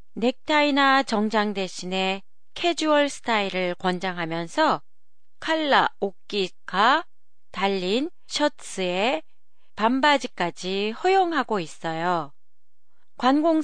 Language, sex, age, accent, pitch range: Japanese, female, 40-59, Korean, 190-275 Hz